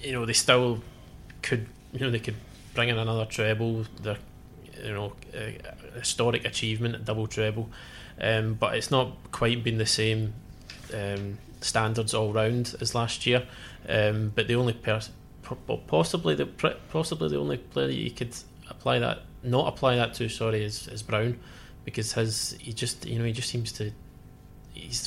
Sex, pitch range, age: male, 110-120 Hz, 20-39